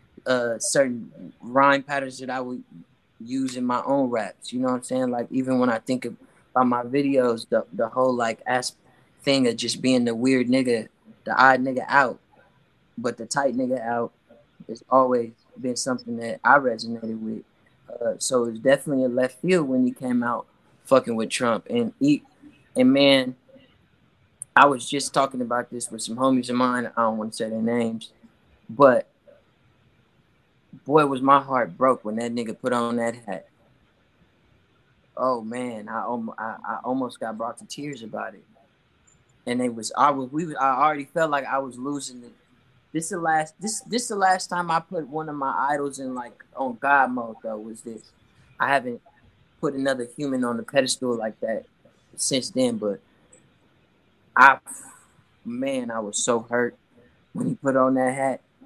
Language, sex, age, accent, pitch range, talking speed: English, male, 20-39, American, 120-140 Hz, 185 wpm